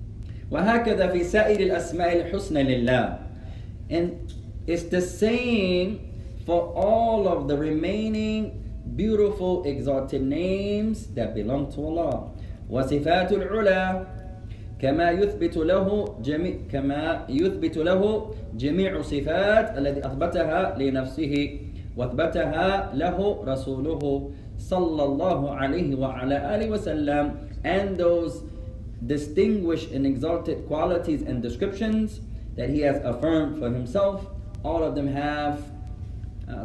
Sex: male